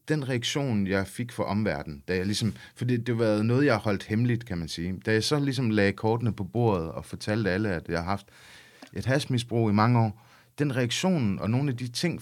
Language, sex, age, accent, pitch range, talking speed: Danish, male, 30-49, native, 100-125 Hz, 215 wpm